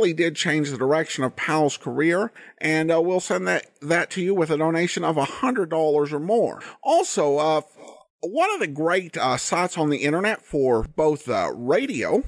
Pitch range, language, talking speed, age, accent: 150-230 Hz, English, 180 wpm, 50-69, American